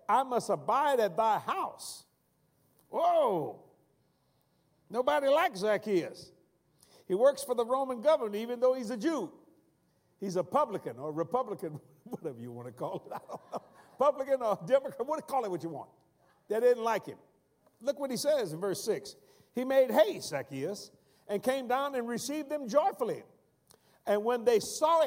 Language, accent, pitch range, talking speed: English, American, 180-275 Hz, 160 wpm